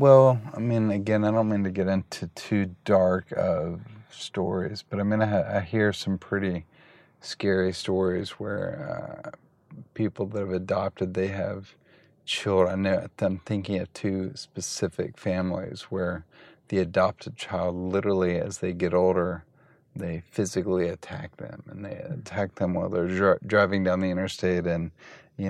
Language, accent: English, American